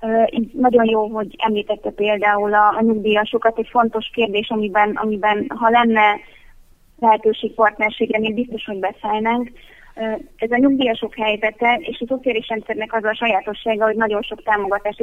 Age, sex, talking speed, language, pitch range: 20-39, female, 135 wpm, Hungarian, 210-230 Hz